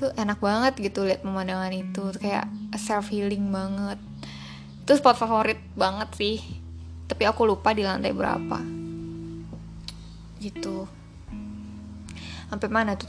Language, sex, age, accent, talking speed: Indonesian, female, 10-29, native, 115 wpm